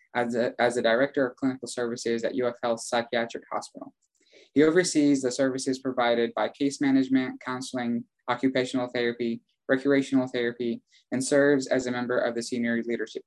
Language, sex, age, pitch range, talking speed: English, male, 20-39, 120-140 Hz, 155 wpm